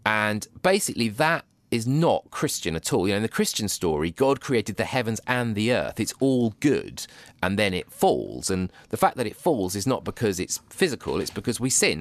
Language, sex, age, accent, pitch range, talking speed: English, male, 30-49, British, 90-120 Hz, 215 wpm